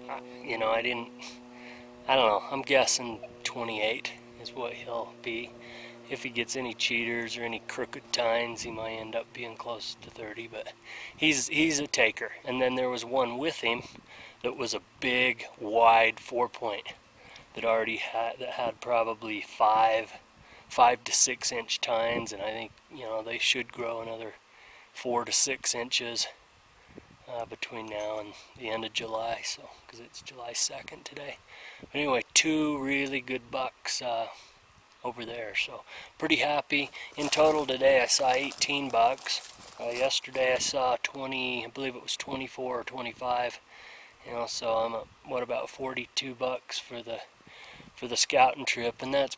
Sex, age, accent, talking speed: male, 20-39, American, 160 wpm